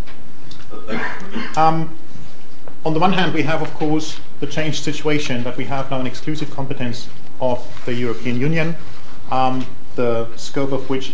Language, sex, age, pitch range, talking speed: English, male, 30-49, 125-150 Hz, 150 wpm